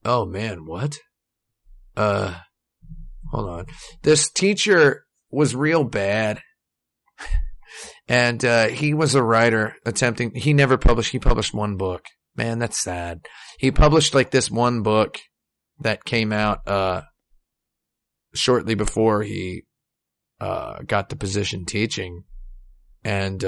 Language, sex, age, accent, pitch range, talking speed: English, male, 30-49, American, 105-140 Hz, 120 wpm